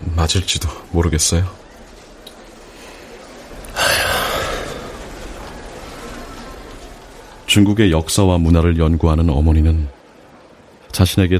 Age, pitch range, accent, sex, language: 30-49, 80-95 Hz, native, male, Korean